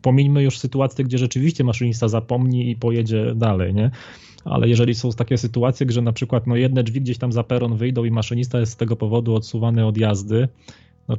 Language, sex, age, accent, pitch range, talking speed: Polish, male, 20-39, native, 105-125 Hz, 200 wpm